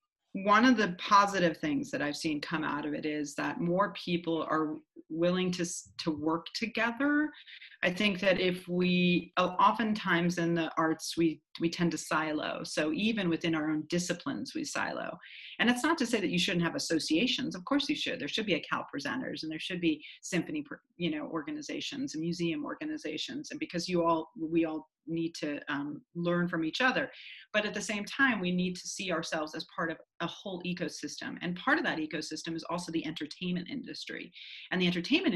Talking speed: 200 wpm